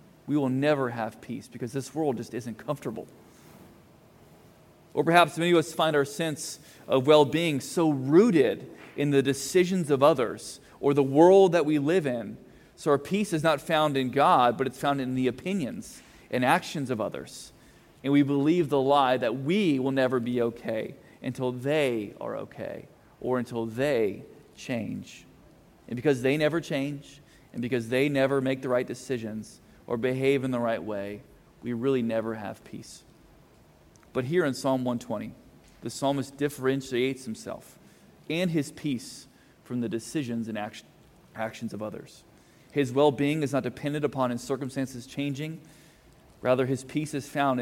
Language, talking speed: English, 165 wpm